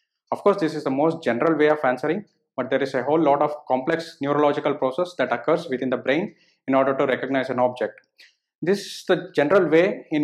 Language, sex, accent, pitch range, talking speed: English, male, Indian, 145-180 Hz, 215 wpm